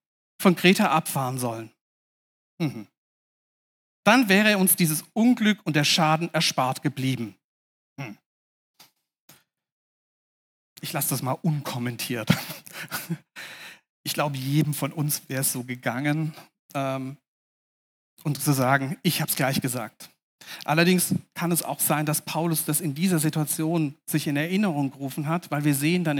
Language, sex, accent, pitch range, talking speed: German, male, German, 145-210 Hz, 135 wpm